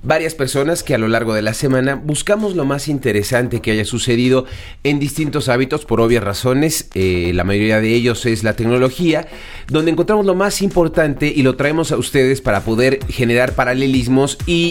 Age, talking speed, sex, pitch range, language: 30-49, 185 wpm, male, 115-155 Hz, Spanish